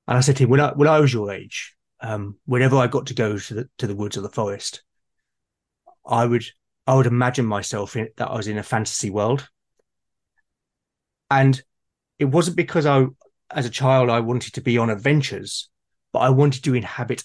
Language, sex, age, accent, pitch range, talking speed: English, male, 30-49, British, 110-135 Hz, 205 wpm